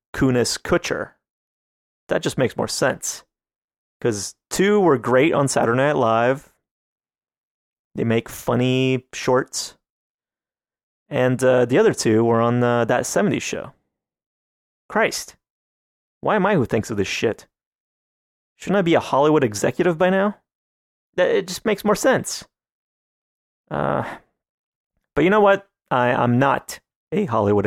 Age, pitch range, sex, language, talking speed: 30-49, 115-155 Hz, male, English, 135 wpm